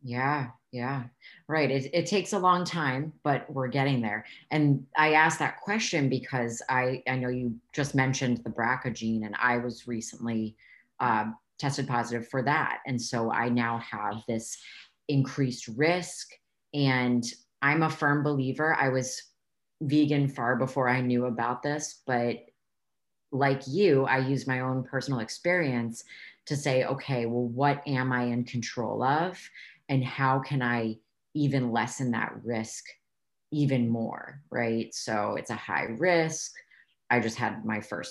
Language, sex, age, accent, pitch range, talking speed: English, female, 30-49, American, 120-145 Hz, 155 wpm